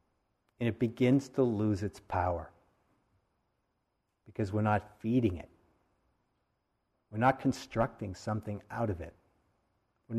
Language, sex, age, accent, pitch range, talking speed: English, male, 50-69, American, 95-125 Hz, 120 wpm